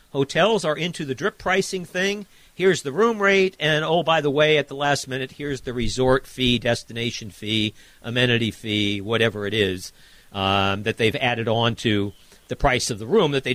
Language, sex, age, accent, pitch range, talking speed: English, male, 50-69, American, 120-180 Hz, 195 wpm